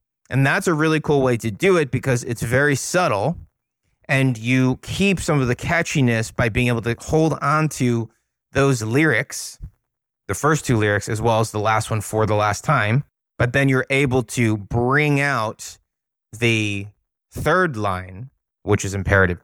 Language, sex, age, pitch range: English, male, 30-49, 115-155 Hz